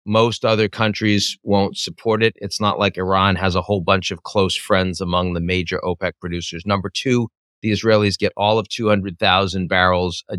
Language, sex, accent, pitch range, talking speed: English, male, American, 95-135 Hz, 185 wpm